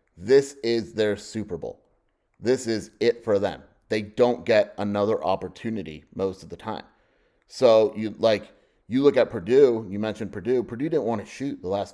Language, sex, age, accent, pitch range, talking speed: English, male, 30-49, American, 95-115 Hz, 180 wpm